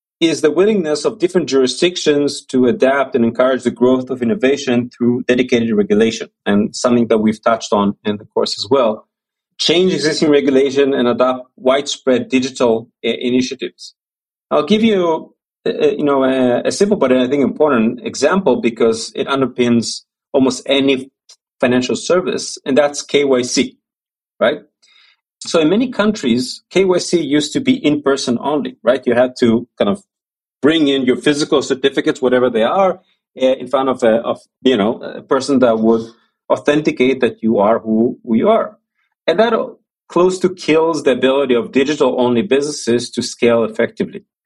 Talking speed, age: 165 wpm, 30-49